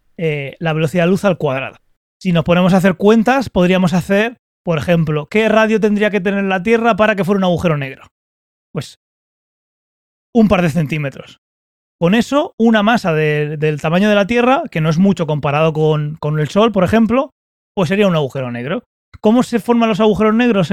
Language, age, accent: Spanish, 30-49, Spanish